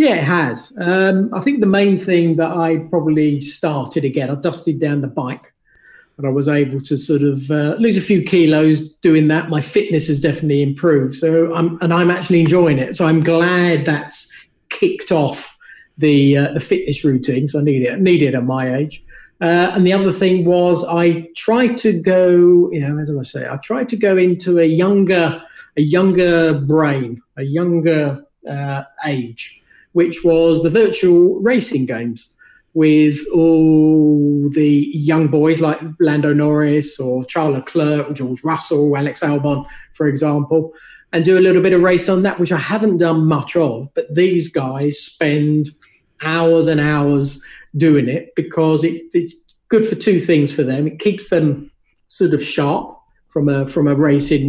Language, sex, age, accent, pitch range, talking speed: English, male, 40-59, British, 145-175 Hz, 175 wpm